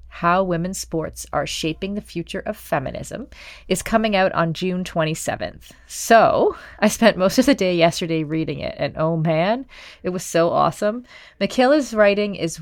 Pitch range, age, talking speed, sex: 160-195 Hz, 30-49, 165 wpm, female